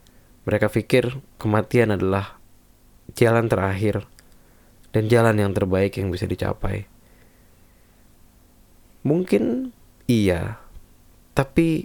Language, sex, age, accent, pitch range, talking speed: Indonesian, male, 20-39, native, 90-120 Hz, 80 wpm